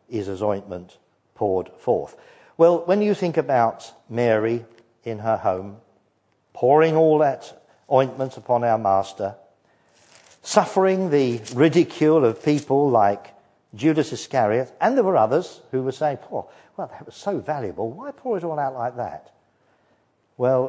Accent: British